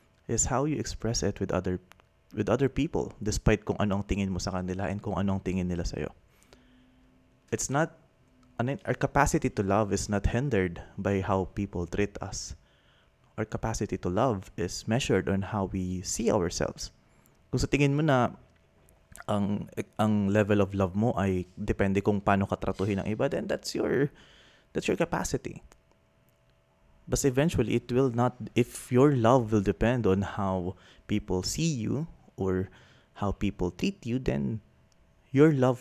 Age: 20-39